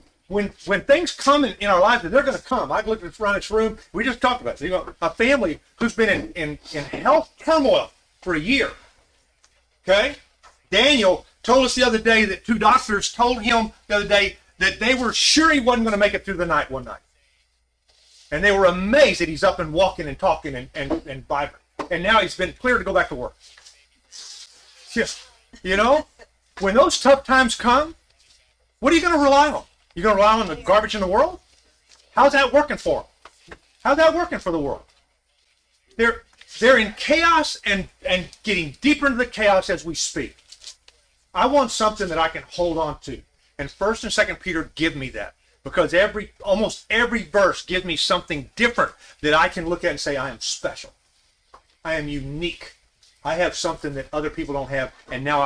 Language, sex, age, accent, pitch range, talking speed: English, male, 40-59, American, 160-255 Hz, 205 wpm